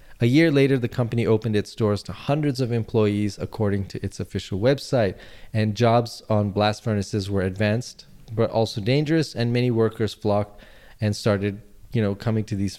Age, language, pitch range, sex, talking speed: 20-39, English, 100-120 Hz, male, 180 wpm